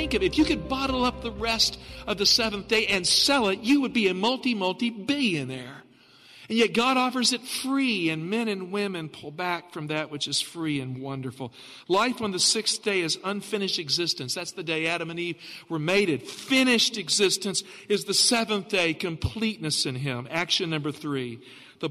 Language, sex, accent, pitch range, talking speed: English, male, American, 155-220 Hz, 190 wpm